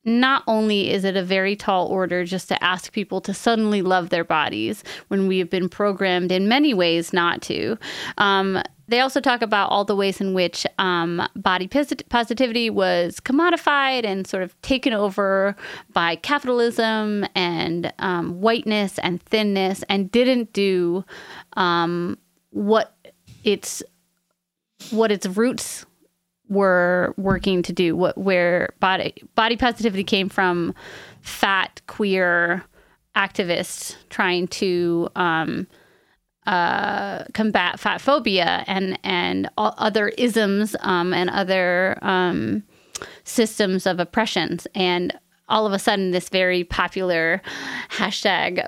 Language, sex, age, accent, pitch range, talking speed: English, female, 30-49, American, 180-215 Hz, 130 wpm